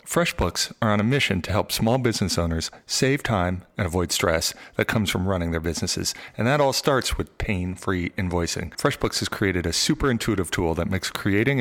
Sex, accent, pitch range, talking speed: male, American, 90-120 Hz, 195 wpm